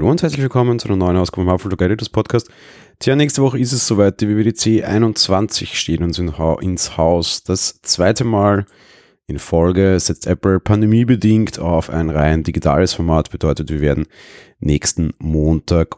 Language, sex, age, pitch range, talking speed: German, male, 30-49, 80-95 Hz, 155 wpm